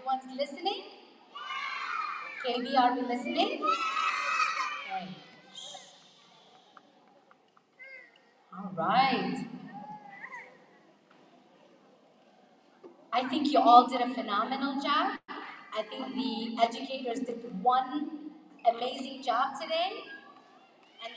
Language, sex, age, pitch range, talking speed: English, female, 30-49, 250-335 Hz, 75 wpm